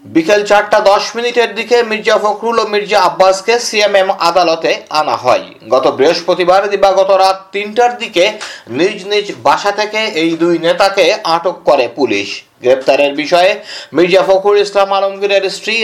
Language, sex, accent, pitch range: Bengali, male, native, 175-240 Hz